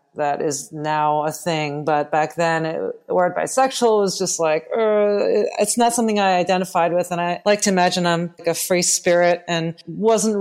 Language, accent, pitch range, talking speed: English, American, 155-200 Hz, 190 wpm